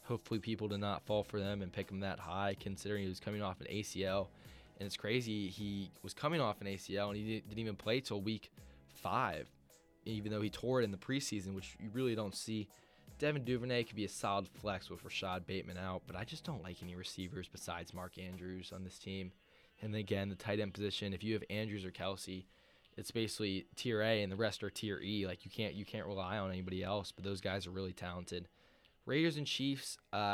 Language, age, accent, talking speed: English, 10-29, American, 220 wpm